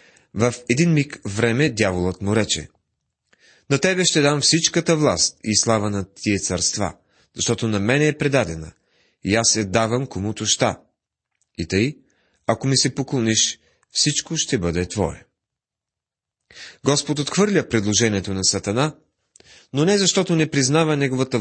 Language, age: Bulgarian, 30-49